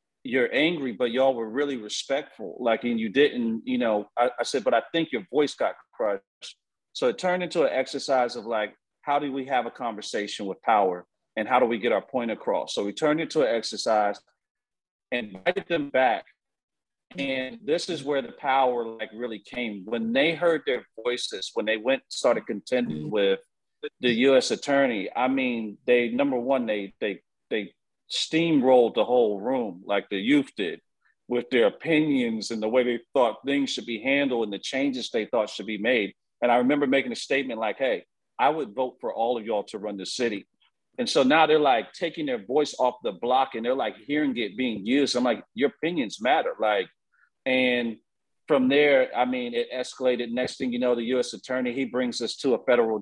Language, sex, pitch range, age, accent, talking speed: English, male, 115-145 Hz, 40-59, American, 205 wpm